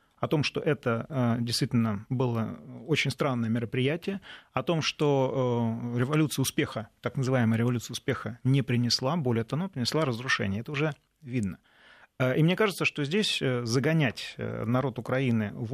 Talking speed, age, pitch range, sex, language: 145 wpm, 30-49, 120-155 Hz, male, Russian